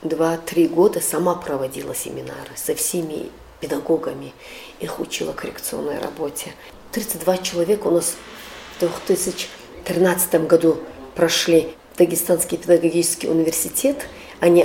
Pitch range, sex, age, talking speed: 165-225 Hz, female, 40-59, 100 wpm